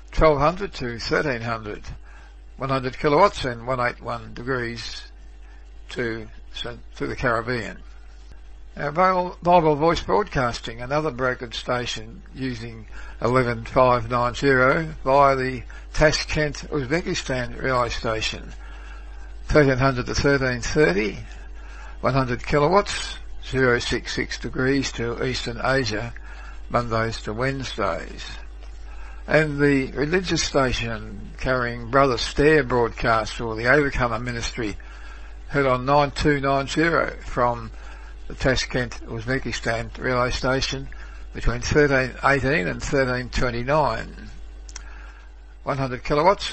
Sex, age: male, 60-79